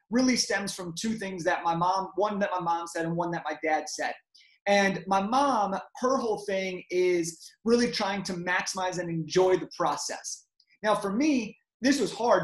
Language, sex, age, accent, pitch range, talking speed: English, male, 30-49, American, 175-210 Hz, 195 wpm